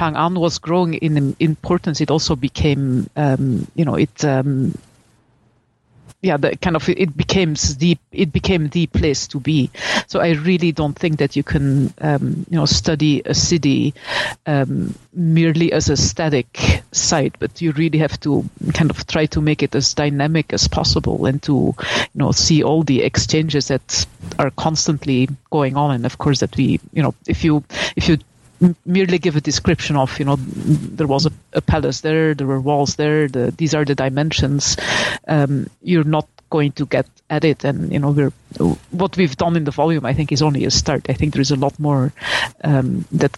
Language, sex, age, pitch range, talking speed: English, female, 50-69, 140-165 Hz, 190 wpm